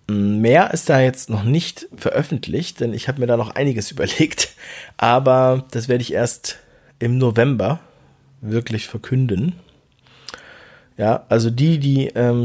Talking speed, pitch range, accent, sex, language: 140 wpm, 100-125 Hz, German, male, German